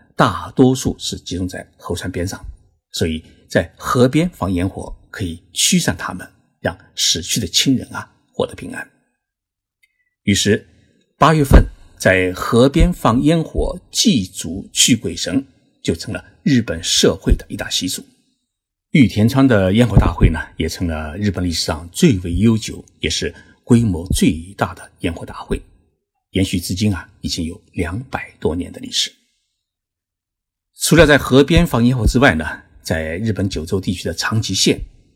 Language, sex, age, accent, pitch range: Chinese, male, 50-69, native, 90-125 Hz